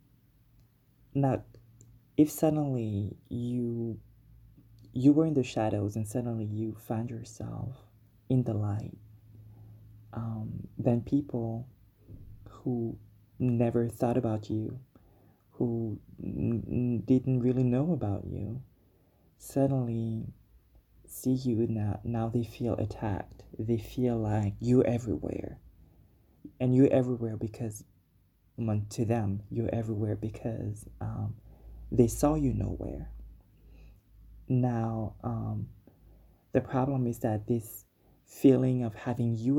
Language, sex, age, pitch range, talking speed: English, male, 20-39, 105-125 Hz, 110 wpm